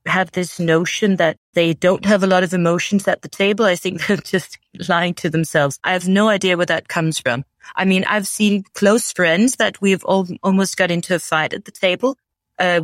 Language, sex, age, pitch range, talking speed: English, female, 30-49, 170-205 Hz, 220 wpm